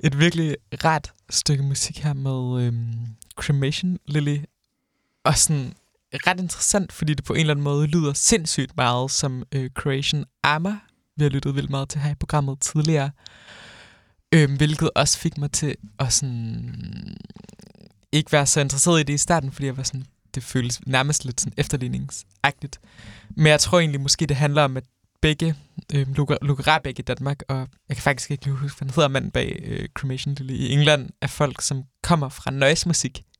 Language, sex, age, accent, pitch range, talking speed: Danish, male, 20-39, native, 130-150 Hz, 180 wpm